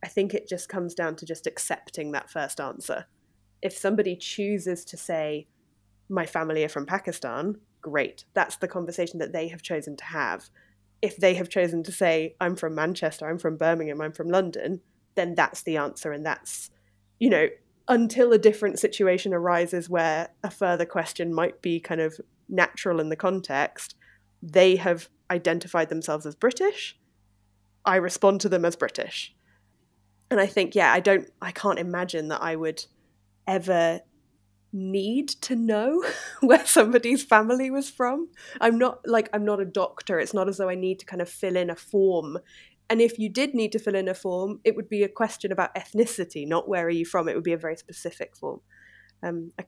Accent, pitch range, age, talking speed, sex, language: British, 160-200 Hz, 20-39, 190 wpm, female, English